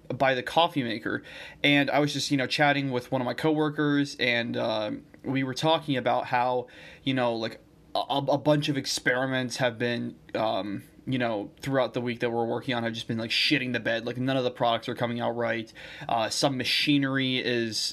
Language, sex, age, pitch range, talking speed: English, male, 20-39, 120-145 Hz, 210 wpm